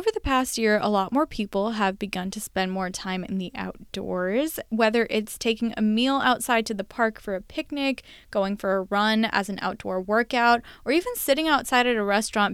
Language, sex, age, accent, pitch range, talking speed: English, female, 20-39, American, 195-250 Hz, 210 wpm